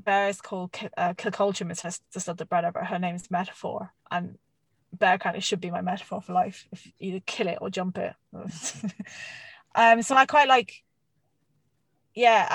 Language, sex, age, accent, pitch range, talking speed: English, female, 20-39, British, 185-225 Hz, 170 wpm